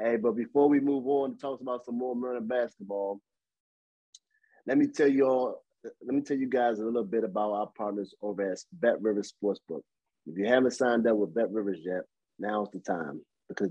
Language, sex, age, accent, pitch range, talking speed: English, male, 30-49, American, 105-125 Hz, 200 wpm